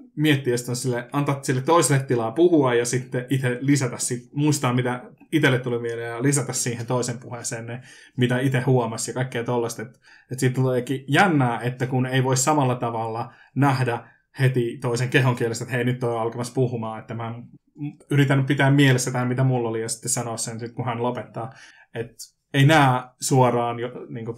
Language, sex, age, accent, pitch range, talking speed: Finnish, male, 20-39, native, 115-130 Hz, 185 wpm